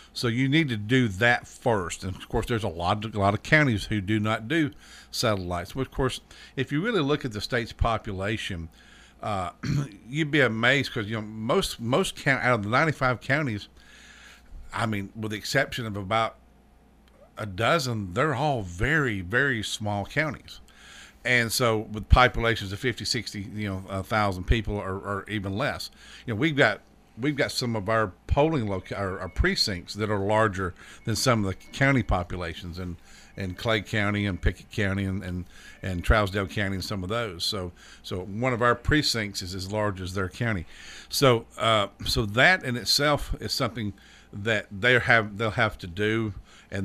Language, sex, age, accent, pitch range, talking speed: English, male, 50-69, American, 95-120 Hz, 185 wpm